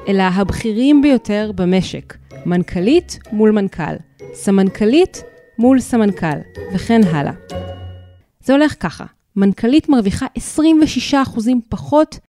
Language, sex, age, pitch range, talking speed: Hebrew, female, 30-49, 180-245 Hz, 95 wpm